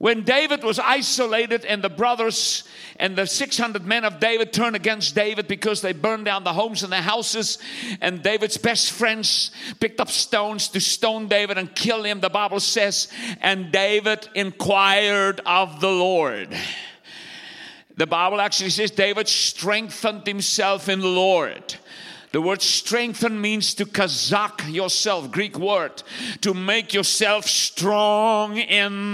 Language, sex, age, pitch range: English, male, 50-69, 195-220 Hz